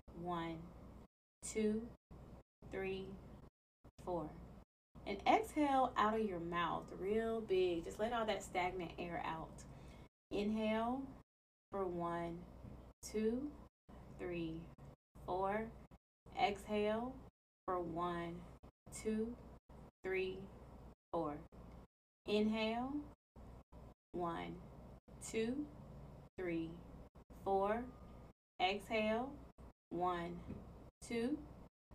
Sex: female